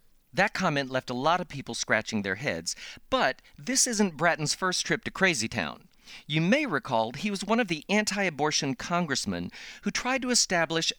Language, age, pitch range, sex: English, 40-59, 125-180 Hz, male